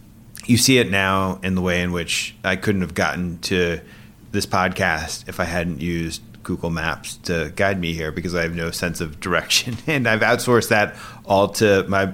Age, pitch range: 30-49, 95-115 Hz